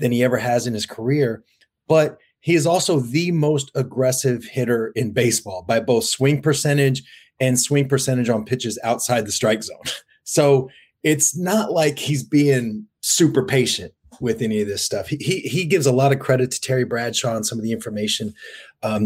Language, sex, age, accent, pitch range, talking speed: English, male, 30-49, American, 110-140 Hz, 190 wpm